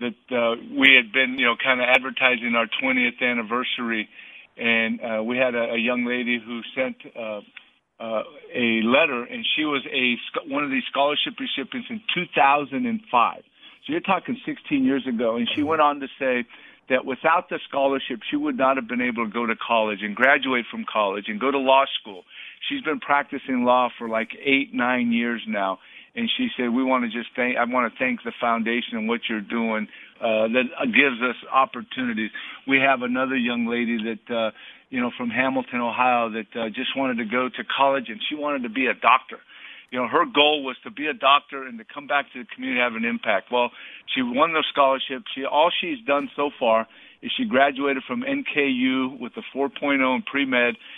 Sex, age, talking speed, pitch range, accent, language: male, 50-69, 205 wpm, 120-145 Hz, American, English